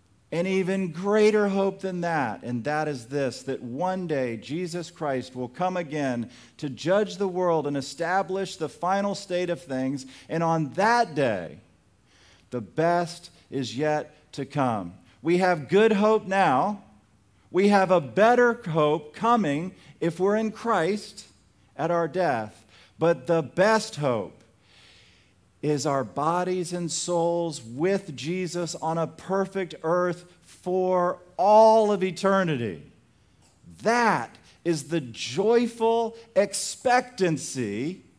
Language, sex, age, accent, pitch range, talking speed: English, male, 40-59, American, 120-190 Hz, 125 wpm